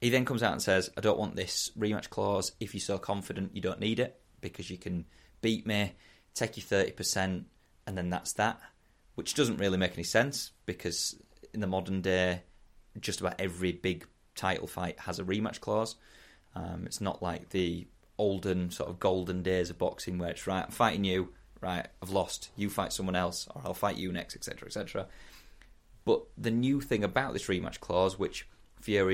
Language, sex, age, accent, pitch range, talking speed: English, male, 20-39, British, 90-105 Hz, 200 wpm